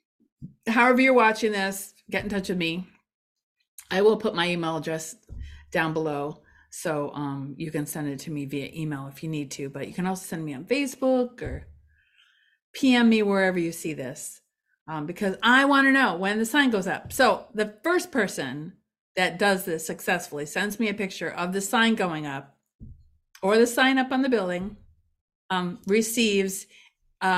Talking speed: 180 wpm